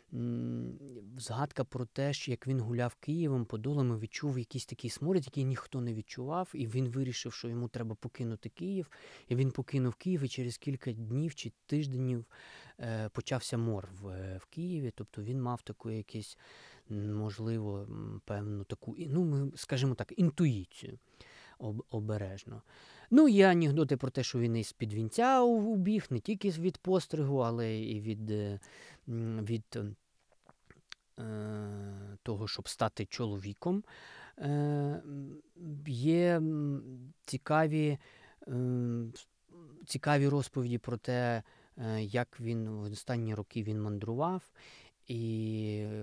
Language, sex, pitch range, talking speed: Ukrainian, male, 110-145 Hz, 115 wpm